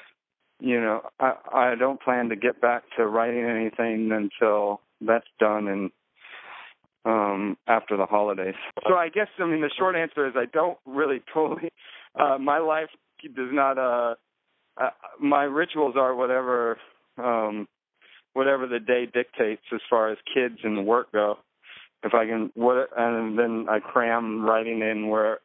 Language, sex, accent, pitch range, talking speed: English, male, American, 110-145 Hz, 160 wpm